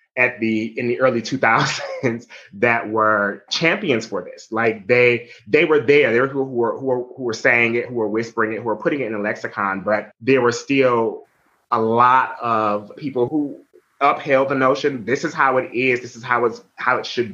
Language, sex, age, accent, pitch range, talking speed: English, male, 20-39, American, 110-135 Hz, 210 wpm